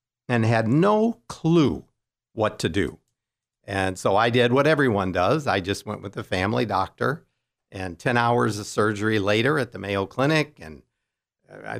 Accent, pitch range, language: American, 95-120 Hz, English